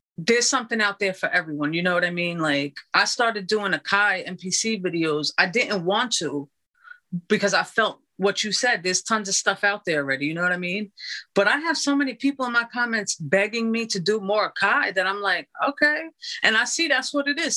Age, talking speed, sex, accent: 30-49, 230 wpm, female, American